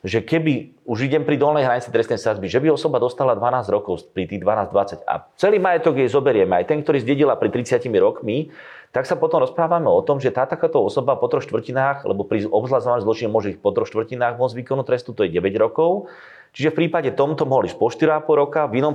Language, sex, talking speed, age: Slovak, male, 225 wpm, 30-49